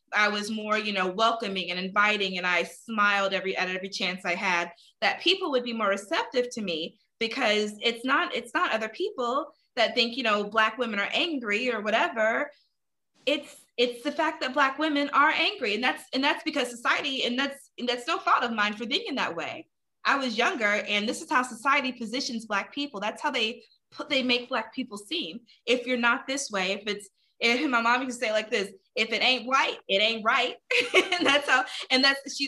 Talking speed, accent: 220 wpm, American